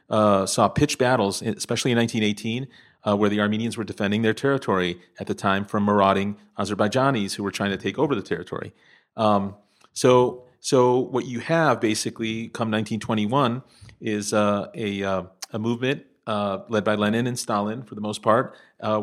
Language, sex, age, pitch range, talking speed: English, male, 40-59, 100-115 Hz, 175 wpm